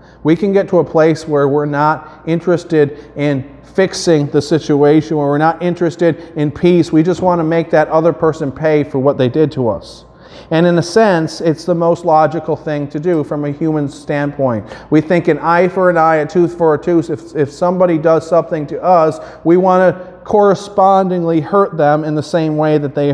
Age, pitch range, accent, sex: 40-59, 145-175 Hz, American, male